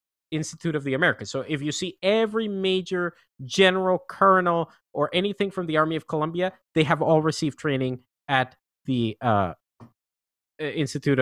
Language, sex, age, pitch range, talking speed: English, male, 30-49, 130-175 Hz, 150 wpm